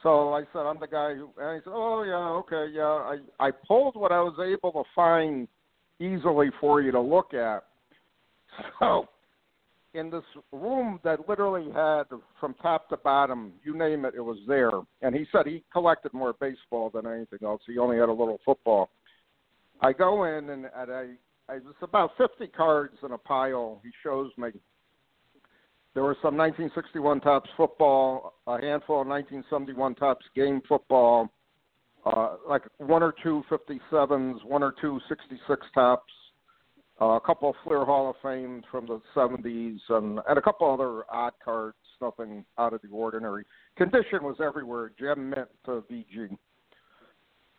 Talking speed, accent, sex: 165 wpm, American, male